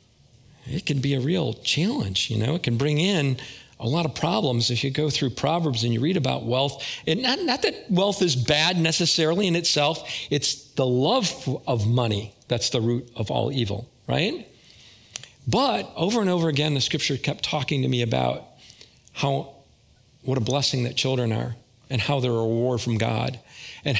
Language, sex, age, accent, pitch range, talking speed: English, male, 40-59, American, 115-150 Hz, 190 wpm